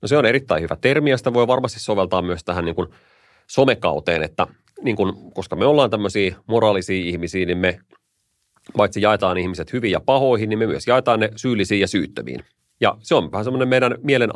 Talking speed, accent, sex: 200 wpm, native, male